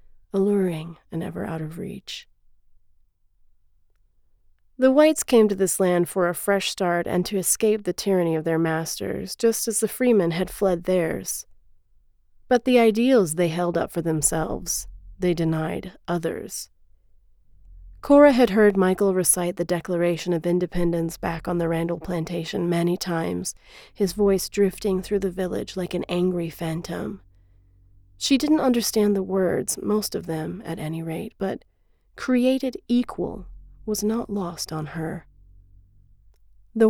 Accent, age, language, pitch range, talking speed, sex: American, 30-49, Czech, 160-200 Hz, 145 wpm, female